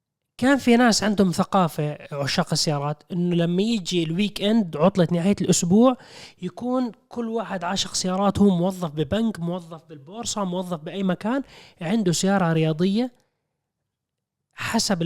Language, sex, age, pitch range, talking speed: Arabic, male, 20-39, 160-220 Hz, 120 wpm